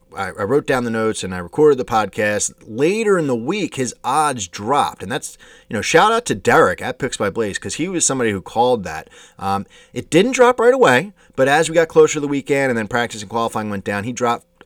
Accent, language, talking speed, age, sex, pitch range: American, English, 240 wpm, 30-49, male, 110-180 Hz